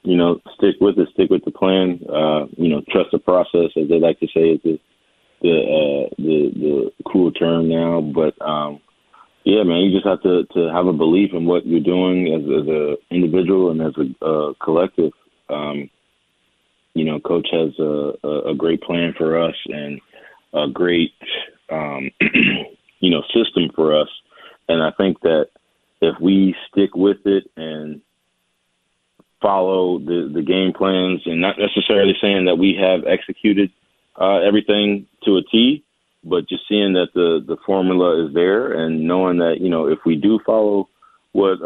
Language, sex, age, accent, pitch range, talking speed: English, male, 30-49, American, 80-95 Hz, 175 wpm